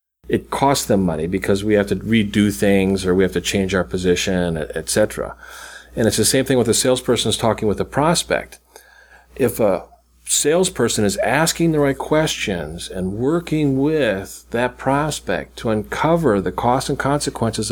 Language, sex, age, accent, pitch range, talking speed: English, male, 50-69, American, 95-130 Hz, 165 wpm